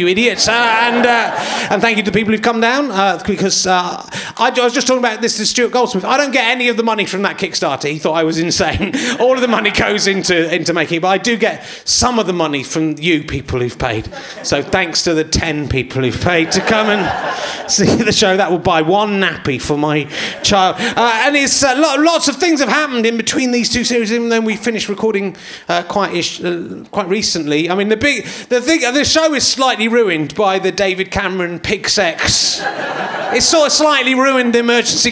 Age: 30-49